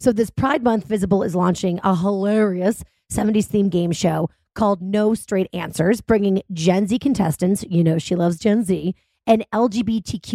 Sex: female